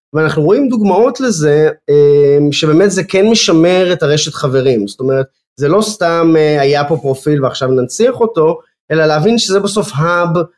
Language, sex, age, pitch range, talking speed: Hebrew, male, 20-39, 130-175 Hz, 155 wpm